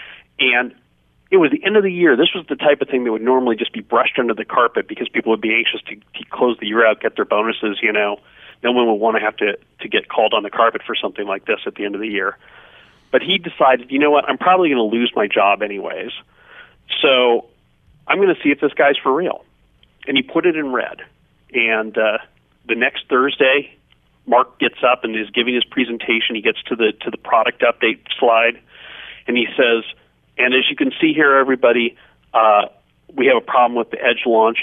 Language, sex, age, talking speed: English, male, 40-59, 230 wpm